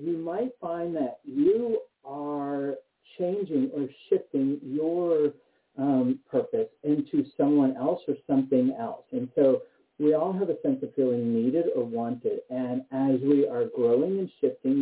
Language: English